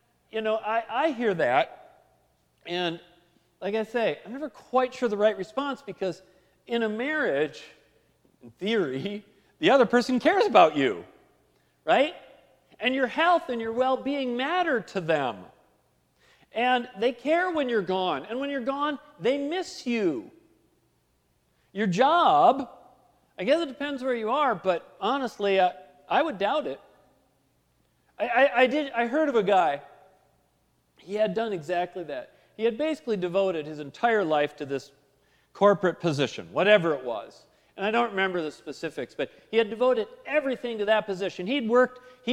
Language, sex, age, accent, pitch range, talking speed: English, male, 40-59, American, 195-270 Hz, 155 wpm